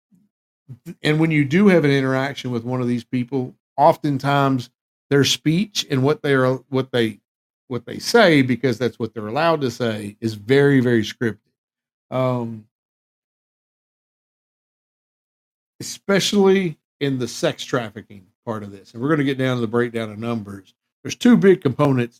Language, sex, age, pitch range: English, male, 50-69, 115-145 Hz